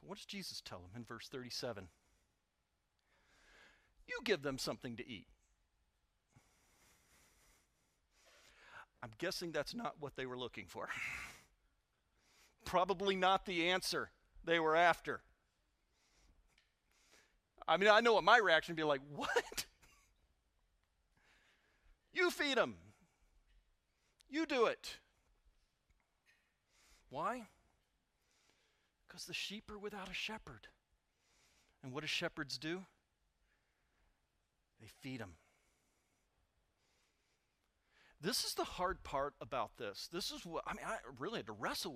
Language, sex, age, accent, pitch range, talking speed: English, male, 40-59, American, 125-195 Hz, 115 wpm